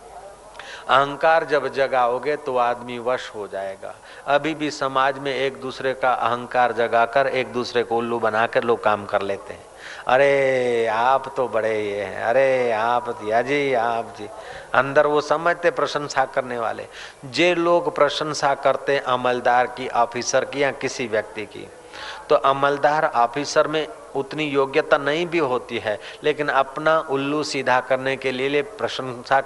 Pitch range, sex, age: 120-145 Hz, male, 40-59